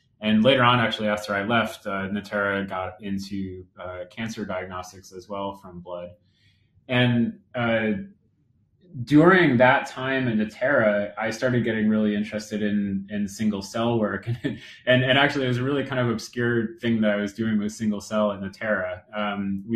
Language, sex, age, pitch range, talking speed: English, male, 30-49, 105-125 Hz, 175 wpm